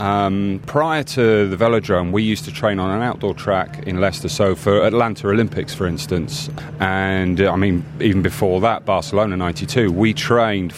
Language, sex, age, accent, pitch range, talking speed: English, male, 30-49, British, 95-130 Hz, 175 wpm